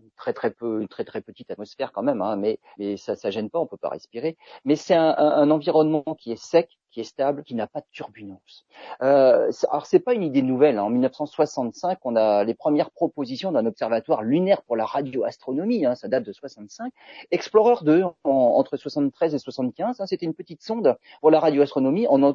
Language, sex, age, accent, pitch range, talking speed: French, male, 40-59, French, 145-215 Hz, 225 wpm